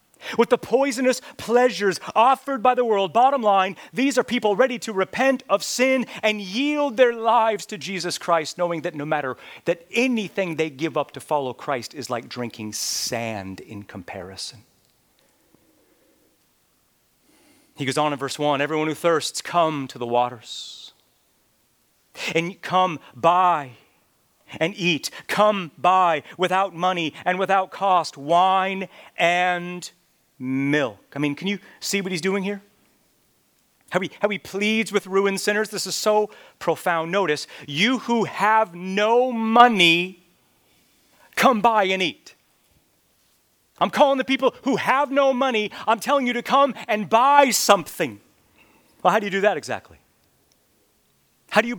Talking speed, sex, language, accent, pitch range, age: 150 wpm, male, English, American, 160-225 Hz, 40-59